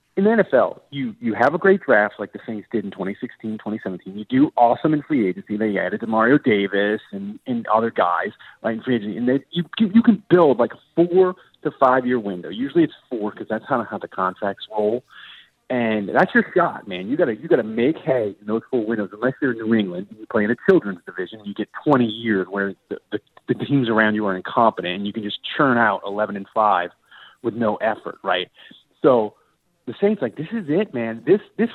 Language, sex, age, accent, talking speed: English, male, 30-49, American, 235 wpm